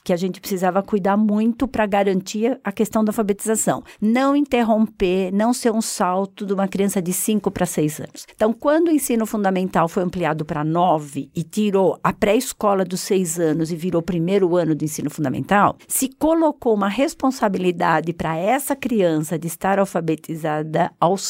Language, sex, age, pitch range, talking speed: Portuguese, female, 50-69, 185-240 Hz, 170 wpm